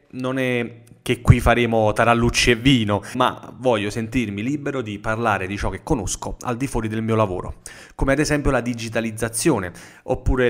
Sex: male